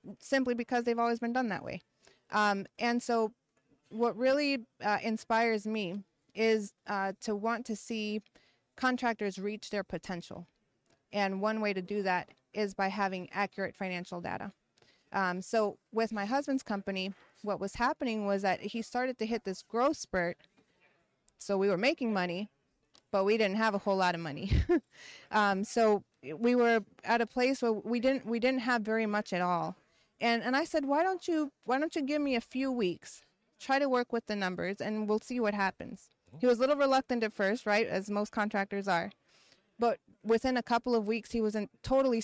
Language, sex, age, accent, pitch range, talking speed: English, female, 30-49, American, 195-235 Hz, 190 wpm